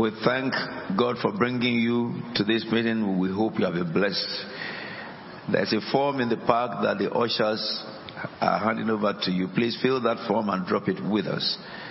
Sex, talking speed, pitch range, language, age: male, 190 wpm, 110-140 Hz, English, 50-69